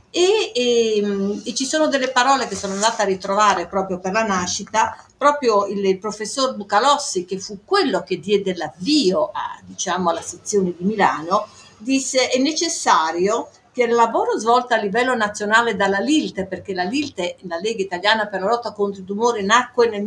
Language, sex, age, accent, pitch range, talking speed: Italian, female, 50-69, native, 190-255 Hz, 175 wpm